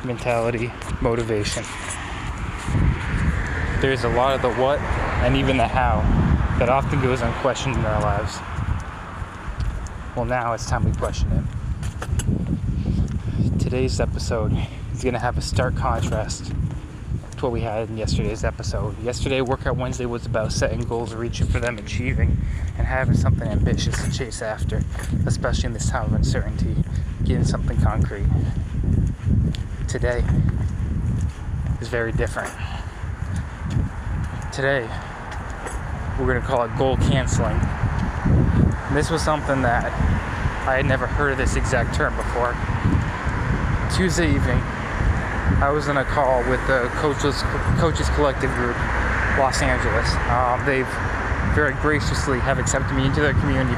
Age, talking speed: 20-39, 130 wpm